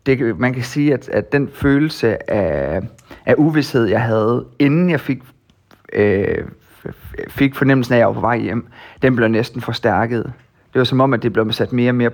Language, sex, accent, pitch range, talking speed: Danish, male, native, 115-140 Hz, 205 wpm